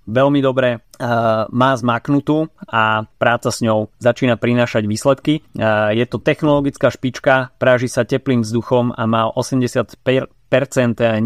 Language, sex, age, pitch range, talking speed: Slovak, male, 30-49, 110-130 Hz, 115 wpm